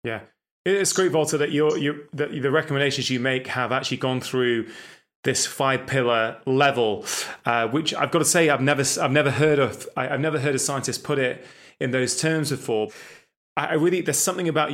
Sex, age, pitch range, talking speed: male, 20-39, 125-150 Hz, 200 wpm